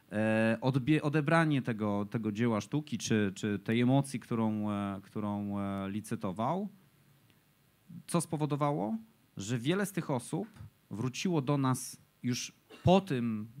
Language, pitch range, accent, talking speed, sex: Polish, 115-145 Hz, native, 110 wpm, male